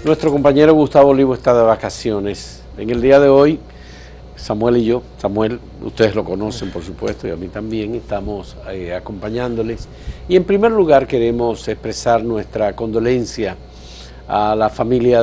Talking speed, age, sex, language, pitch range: 155 wpm, 50-69, male, Spanish, 105-145 Hz